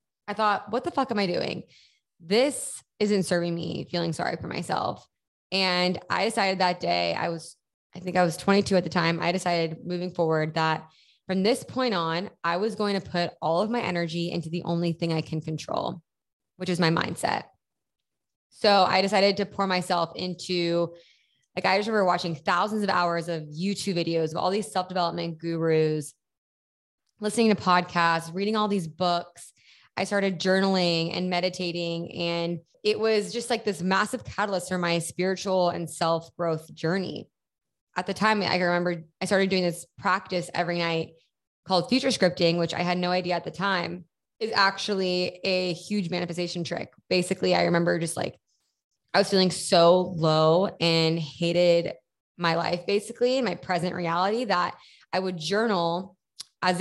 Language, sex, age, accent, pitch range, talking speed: English, female, 20-39, American, 170-195 Hz, 170 wpm